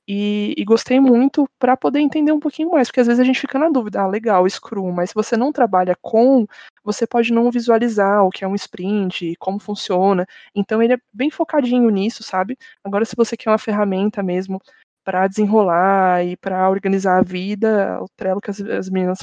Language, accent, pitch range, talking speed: Portuguese, Brazilian, 190-245 Hz, 205 wpm